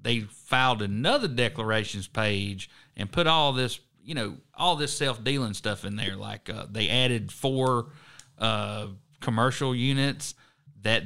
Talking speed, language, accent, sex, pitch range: 140 wpm, English, American, male, 110-145 Hz